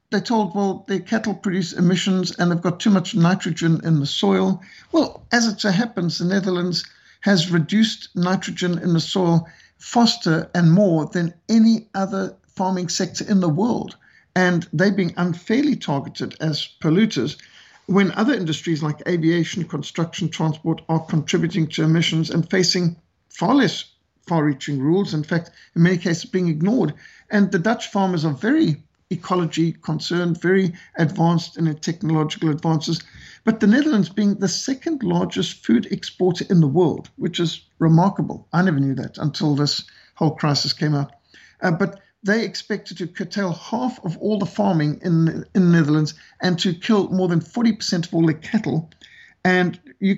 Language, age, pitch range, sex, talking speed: English, 60-79, 165-200 Hz, male, 160 wpm